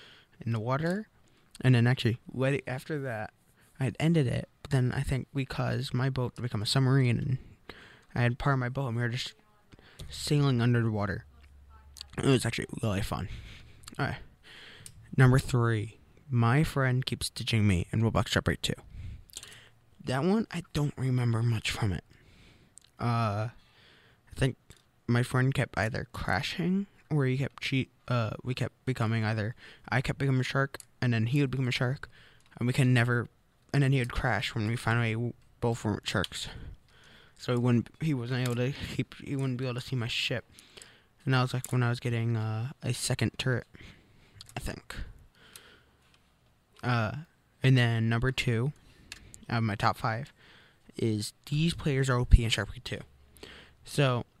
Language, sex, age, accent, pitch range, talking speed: English, male, 20-39, American, 115-135 Hz, 175 wpm